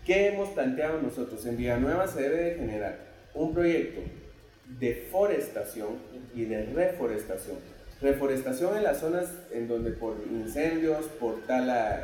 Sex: male